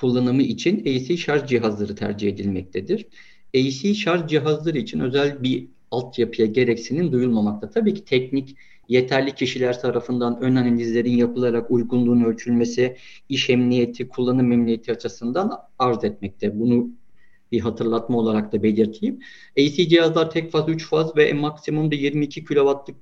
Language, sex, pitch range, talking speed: Turkish, male, 115-145 Hz, 135 wpm